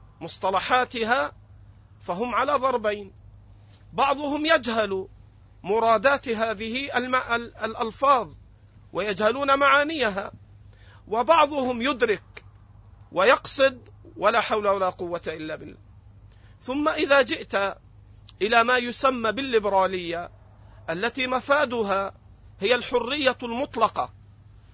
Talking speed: 80 wpm